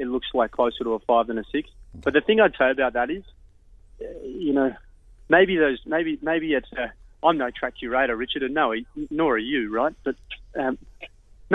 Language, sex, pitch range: English, male, 115-145 Hz